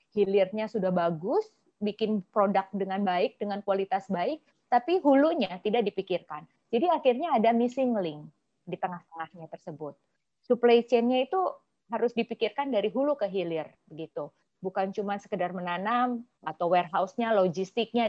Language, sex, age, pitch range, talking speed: Indonesian, female, 20-39, 180-235 Hz, 130 wpm